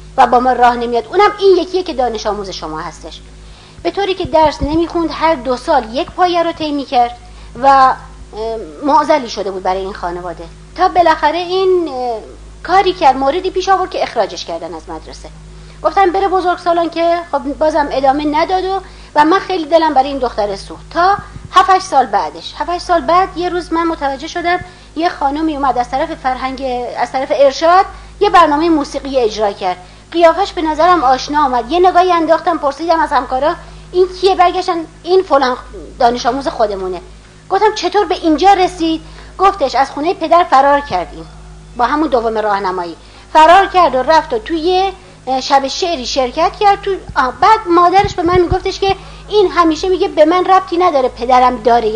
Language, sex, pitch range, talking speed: Persian, female, 250-360 Hz, 175 wpm